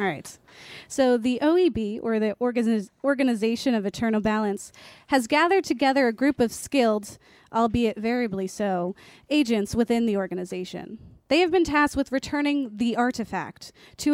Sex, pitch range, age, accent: female, 205-270 Hz, 30-49, American